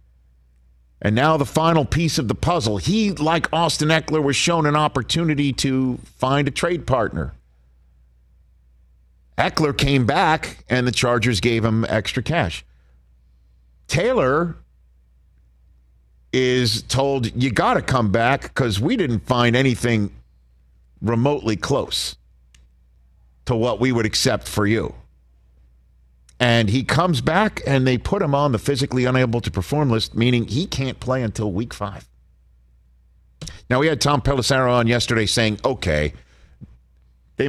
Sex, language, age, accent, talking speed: male, English, 50-69, American, 135 wpm